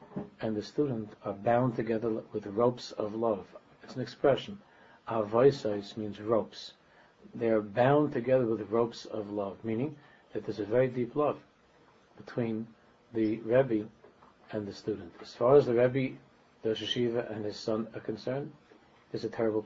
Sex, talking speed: male, 160 wpm